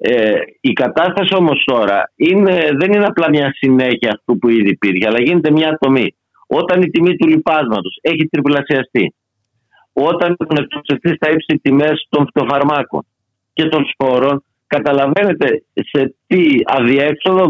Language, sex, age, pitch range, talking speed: Greek, male, 50-69, 130-175 Hz, 135 wpm